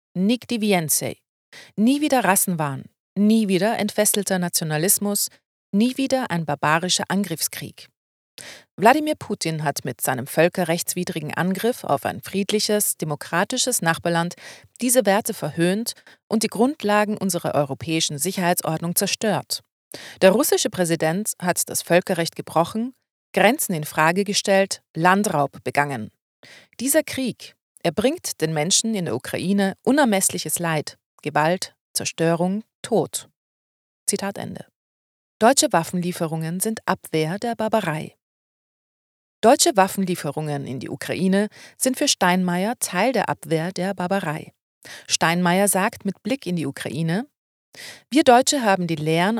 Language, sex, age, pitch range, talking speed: German, female, 40-59, 165-210 Hz, 115 wpm